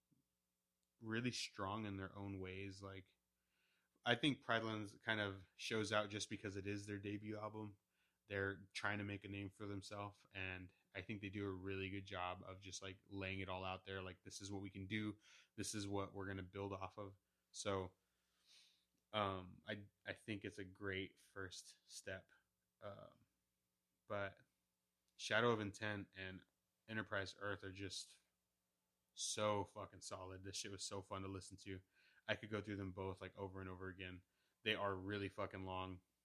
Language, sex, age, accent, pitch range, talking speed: English, male, 20-39, American, 90-105 Hz, 180 wpm